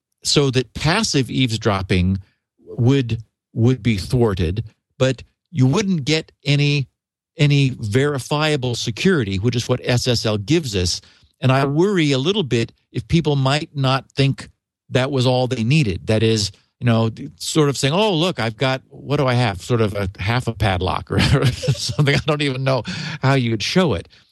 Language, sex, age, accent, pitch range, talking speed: English, male, 50-69, American, 110-145 Hz, 175 wpm